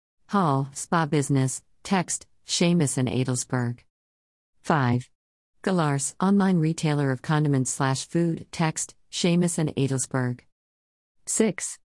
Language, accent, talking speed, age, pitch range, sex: English, American, 100 wpm, 50-69, 130-170 Hz, female